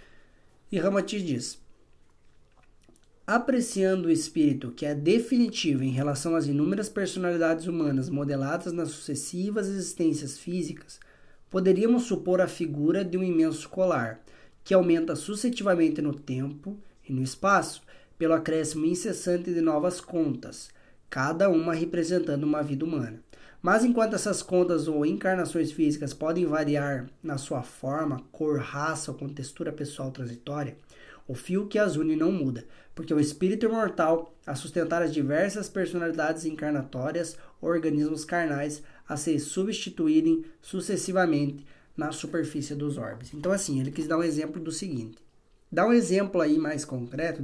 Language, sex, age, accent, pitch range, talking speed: Portuguese, male, 20-39, Brazilian, 145-180 Hz, 140 wpm